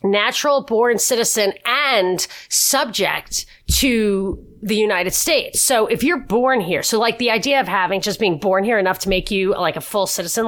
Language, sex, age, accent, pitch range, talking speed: English, female, 30-49, American, 190-245 Hz, 185 wpm